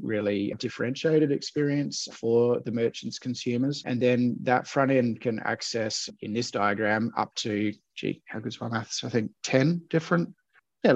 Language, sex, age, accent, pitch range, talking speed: English, male, 30-49, Australian, 110-130 Hz, 165 wpm